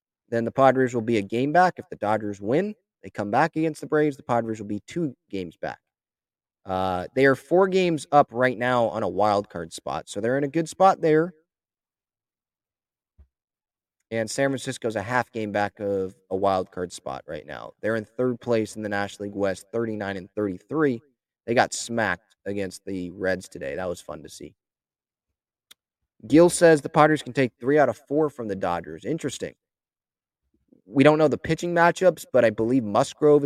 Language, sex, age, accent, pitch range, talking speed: English, male, 20-39, American, 100-145 Hz, 190 wpm